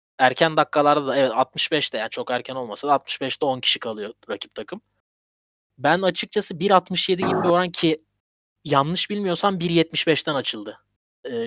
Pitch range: 130-155 Hz